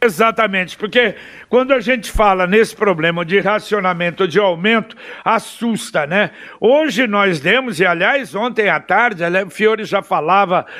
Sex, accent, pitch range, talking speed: male, Brazilian, 200-265 Hz, 145 wpm